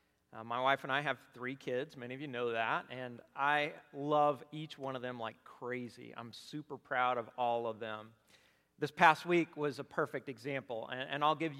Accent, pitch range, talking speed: American, 130-175 Hz, 205 wpm